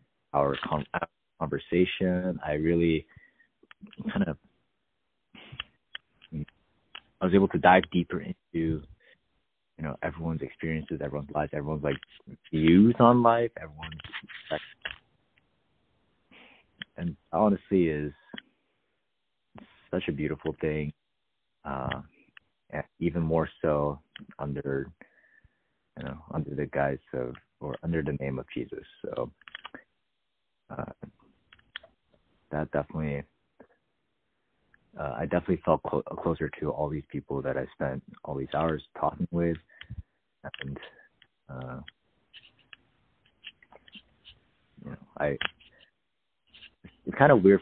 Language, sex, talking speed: English, male, 100 wpm